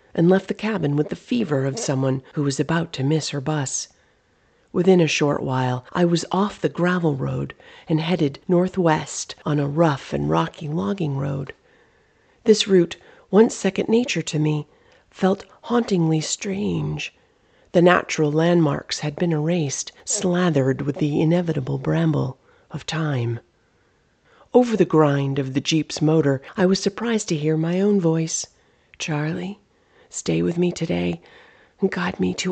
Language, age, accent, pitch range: English, 40-59, American, 150-190 Hz